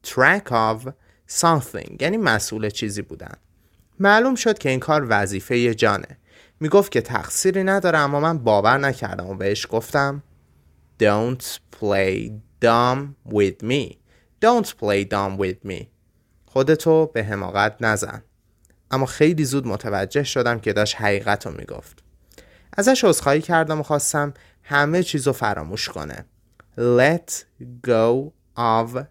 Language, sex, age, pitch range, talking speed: Persian, male, 30-49, 105-145 Hz, 125 wpm